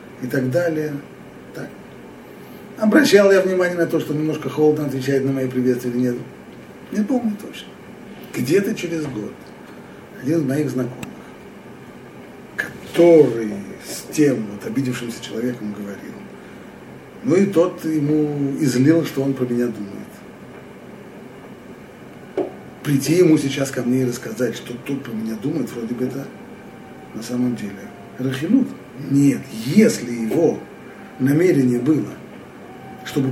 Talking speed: 125 wpm